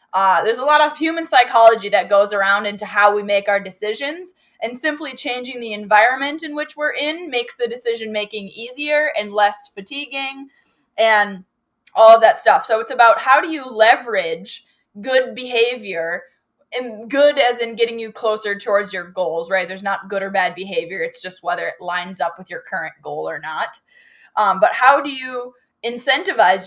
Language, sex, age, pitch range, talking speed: English, female, 10-29, 205-275 Hz, 185 wpm